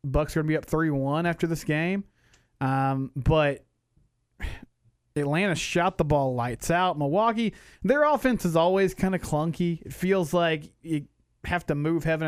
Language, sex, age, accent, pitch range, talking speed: English, male, 30-49, American, 140-175 Hz, 170 wpm